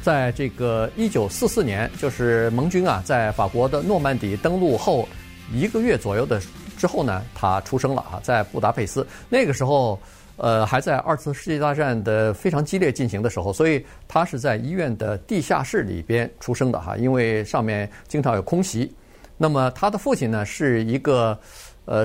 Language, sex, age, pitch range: Chinese, male, 50-69, 115-155 Hz